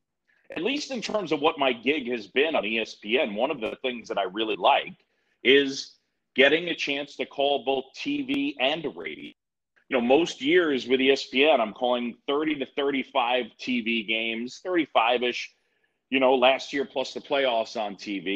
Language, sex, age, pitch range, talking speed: English, male, 40-59, 125-185 Hz, 175 wpm